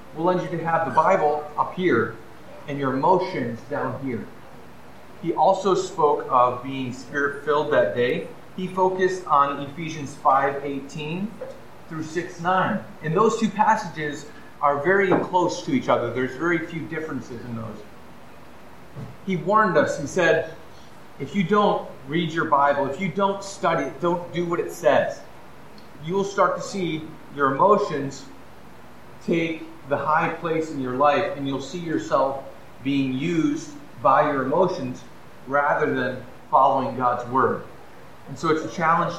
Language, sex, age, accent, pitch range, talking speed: English, male, 30-49, American, 145-185 Hz, 150 wpm